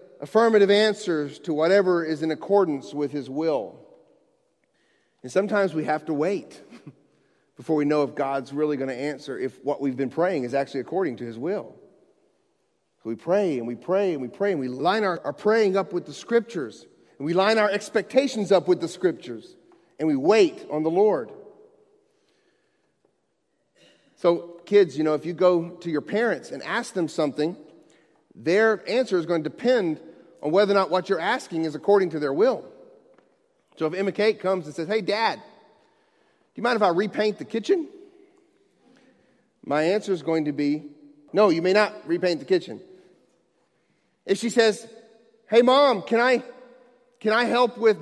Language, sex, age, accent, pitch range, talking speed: English, male, 40-59, American, 160-245 Hz, 180 wpm